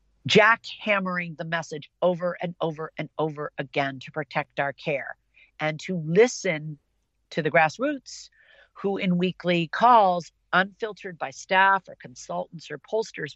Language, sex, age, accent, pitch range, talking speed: English, female, 50-69, American, 155-190 Hz, 140 wpm